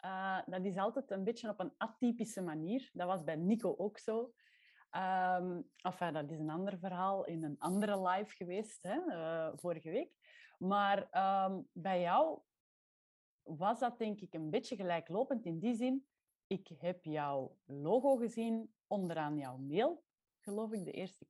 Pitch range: 175-225 Hz